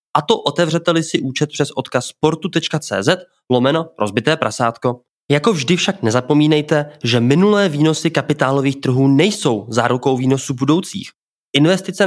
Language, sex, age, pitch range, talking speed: Czech, male, 20-39, 105-130 Hz, 125 wpm